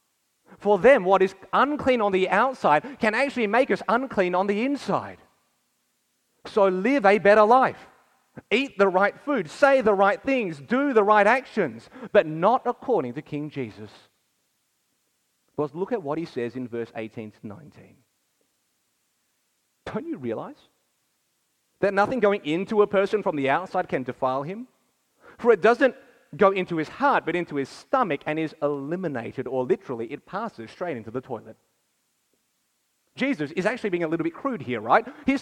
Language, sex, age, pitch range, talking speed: English, male, 30-49, 155-235 Hz, 165 wpm